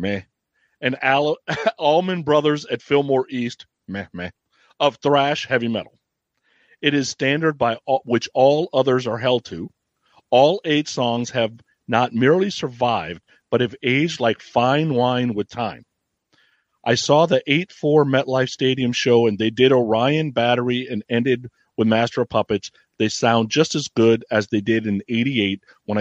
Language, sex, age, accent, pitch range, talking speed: English, male, 40-59, American, 110-135 Hz, 160 wpm